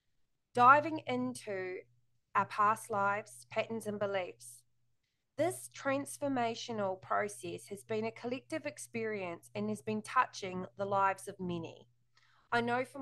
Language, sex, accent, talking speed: English, female, Australian, 125 wpm